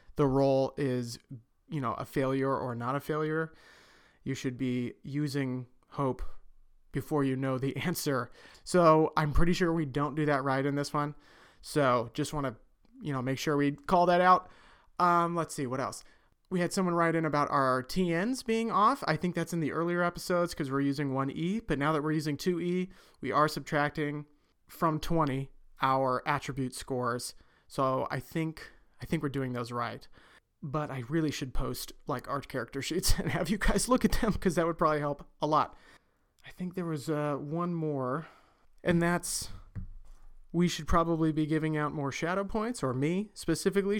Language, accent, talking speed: English, American, 190 wpm